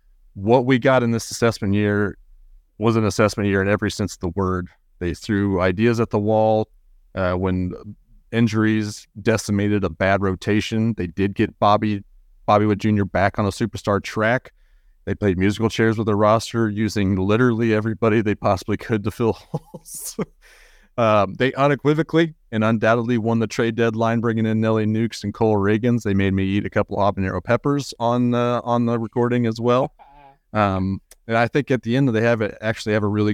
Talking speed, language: 190 wpm, English